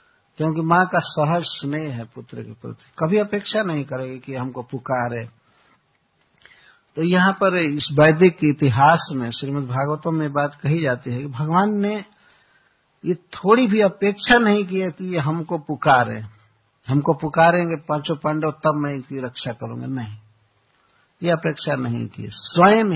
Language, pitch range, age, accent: Hindi, 130-180 Hz, 60-79, native